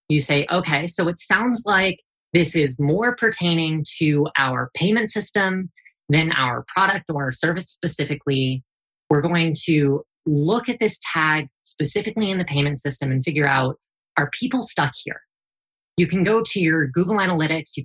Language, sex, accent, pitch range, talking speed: English, female, American, 140-175 Hz, 160 wpm